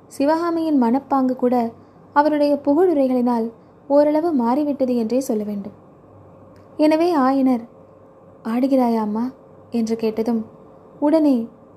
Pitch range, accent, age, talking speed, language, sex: 225-295 Hz, native, 20-39, 85 wpm, Tamil, female